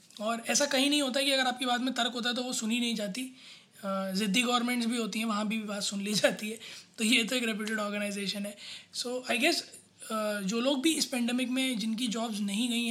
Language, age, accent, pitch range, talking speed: Hindi, 20-39, native, 210-245 Hz, 230 wpm